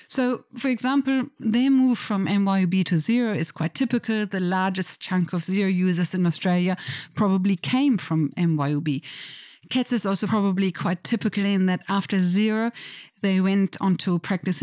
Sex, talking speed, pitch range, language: female, 160 wpm, 175-215 Hz, English